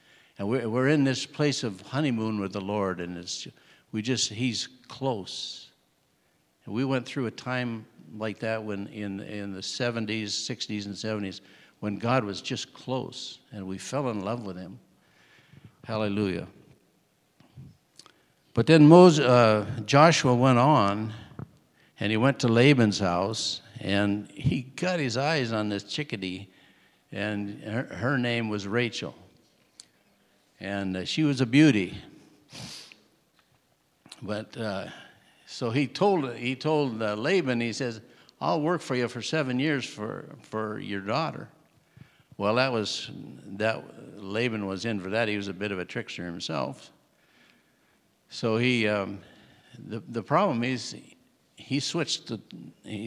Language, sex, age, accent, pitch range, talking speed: English, male, 60-79, American, 105-130 Hz, 140 wpm